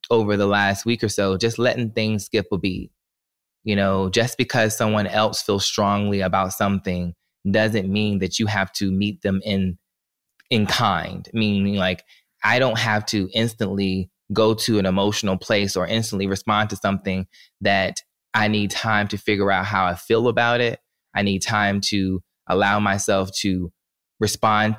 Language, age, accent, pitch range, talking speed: English, 20-39, American, 95-110 Hz, 170 wpm